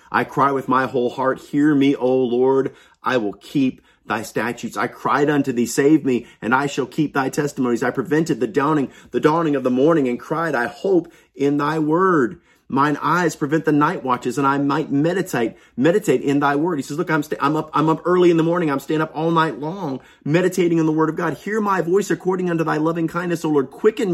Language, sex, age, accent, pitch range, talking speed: English, male, 30-49, American, 125-170 Hz, 230 wpm